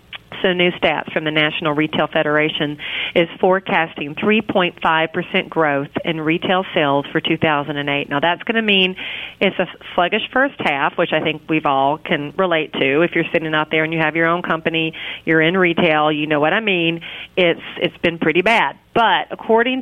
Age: 40-59